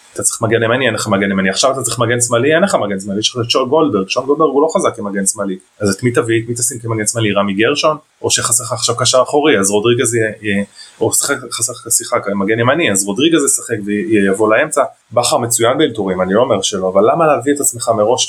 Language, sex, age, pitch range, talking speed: Hebrew, male, 20-39, 100-130 Hz, 195 wpm